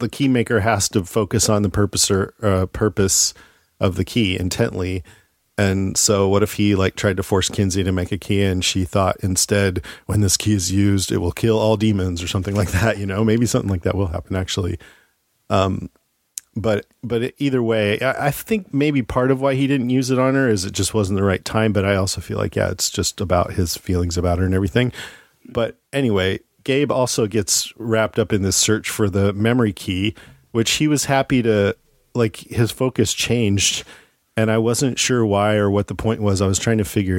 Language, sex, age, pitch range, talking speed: English, male, 40-59, 95-115 Hz, 220 wpm